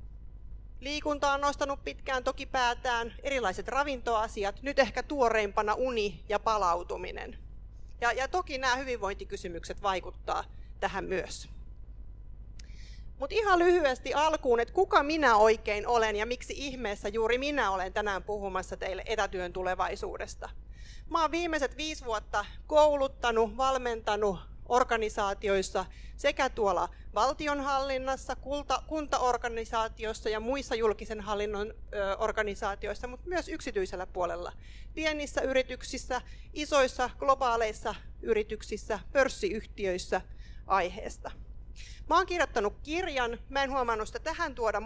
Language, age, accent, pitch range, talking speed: Finnish, 40-59, native, 210-275 Hz, 105 wpm